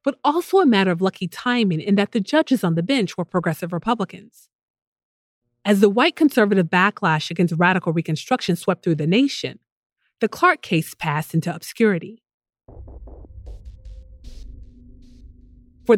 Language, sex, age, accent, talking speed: English, female, 30-49, American, 135 wpm